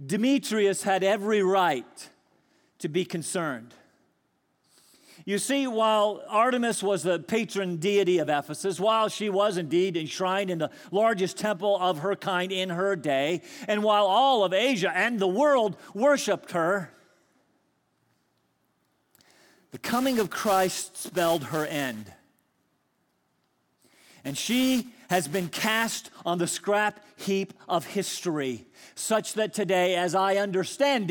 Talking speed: 125 wpm